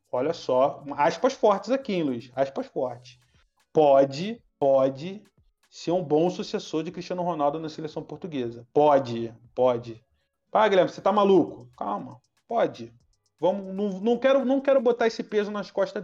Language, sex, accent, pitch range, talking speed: Portuguese, male, Brazilian, 135-185 Hz, 155 wpm